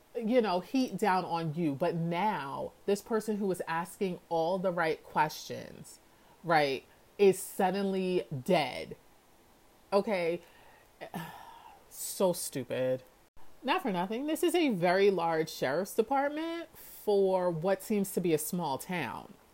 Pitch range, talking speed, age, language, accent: 165-245 Hz, 130 wpm, 30-49, English, American